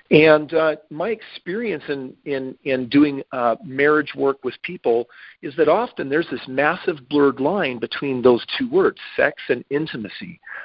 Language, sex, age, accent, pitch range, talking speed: English, male, 40-59, American, 130-160 Hz, 150 wpm